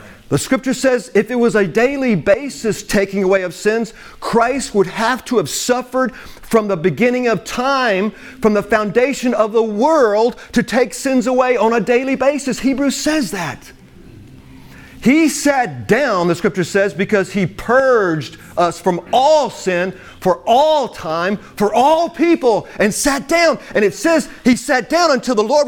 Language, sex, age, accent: English, male, 40-59, American